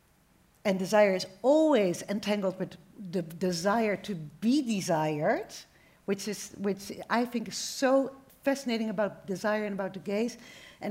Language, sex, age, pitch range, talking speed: Dutch, female, 50-69, 195-255 Hz, 145 wpm